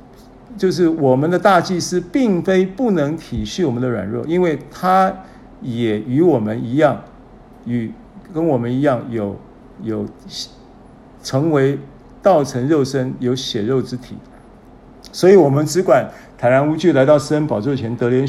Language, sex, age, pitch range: Chinese, male, 50-69, 125-175 Hz